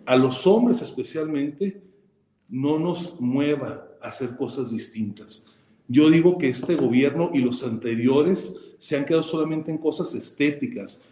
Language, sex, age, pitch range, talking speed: Spanish, male, 40-59, 135-190 Hz, 140 wpm